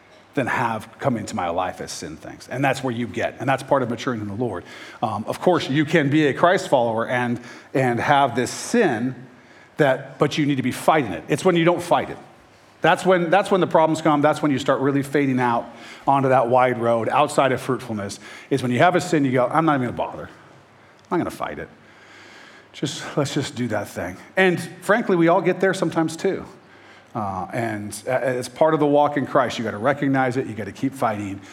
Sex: male